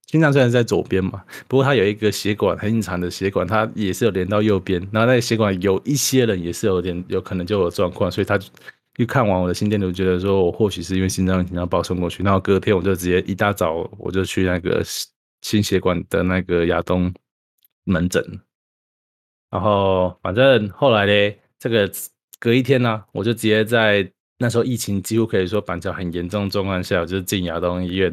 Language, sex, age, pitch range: Chinese, male, 20-39, 95-120 Hz